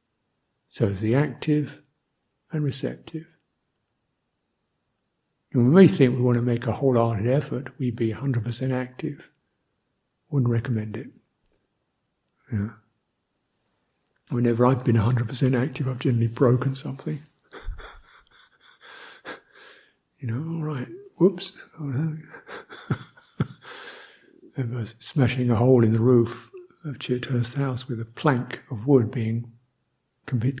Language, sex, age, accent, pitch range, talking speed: English, male, 60-79, British, 120-155 Hz, 110 wpm